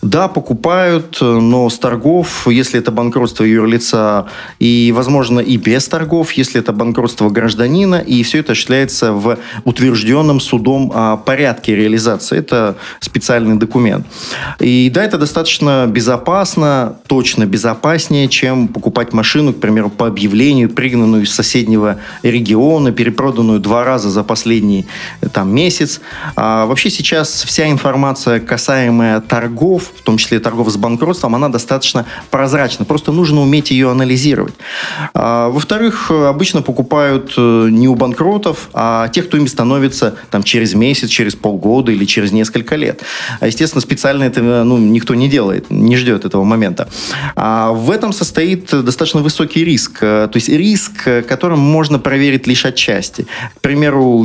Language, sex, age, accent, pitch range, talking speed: Russian, male, 30-49, native, 115-145 Hz, 135 wpm